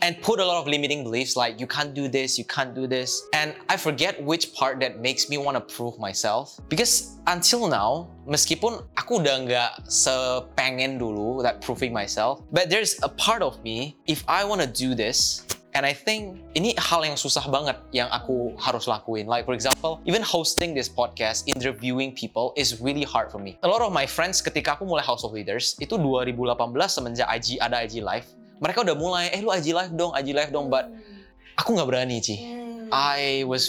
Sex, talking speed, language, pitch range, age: male, 205 wpm, Indonesian, 125-160 Hz, 20-39